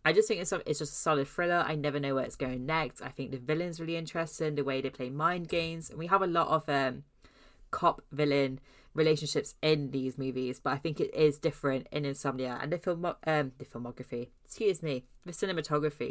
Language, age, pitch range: English, 20-39, 135-160 Hz